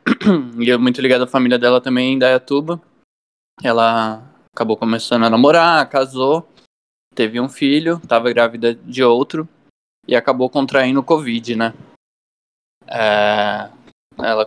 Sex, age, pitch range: male, 10-29, 115-135 Hz